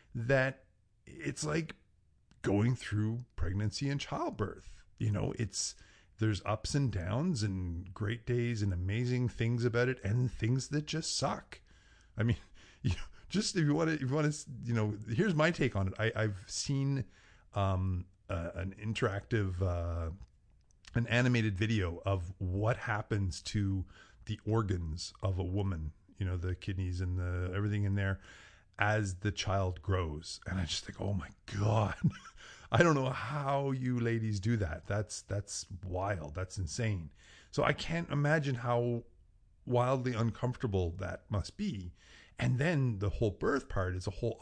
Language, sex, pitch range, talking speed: English, male, 95-120 Hz, 160 wpm